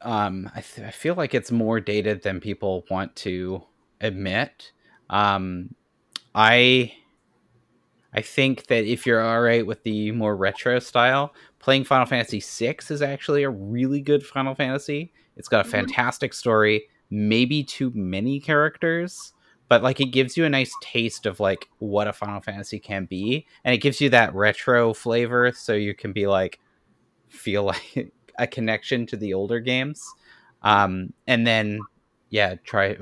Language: English